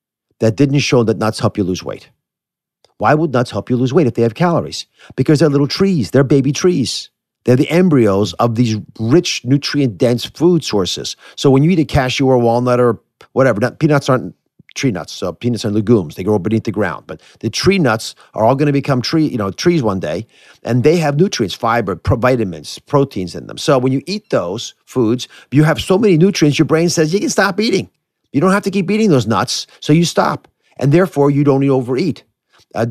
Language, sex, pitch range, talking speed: English, male, 115-160 Hz, 215 wpm